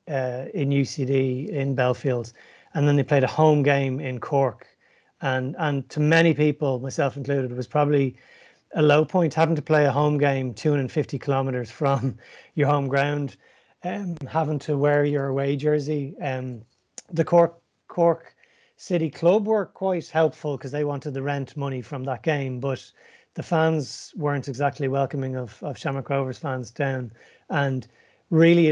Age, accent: 30-49, Irish